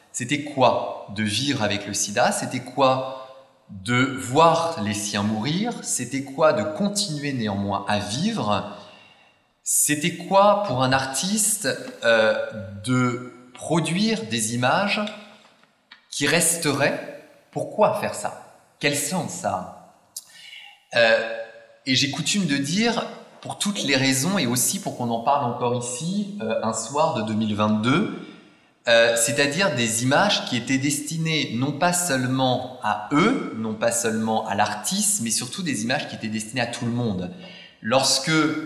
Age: 30-49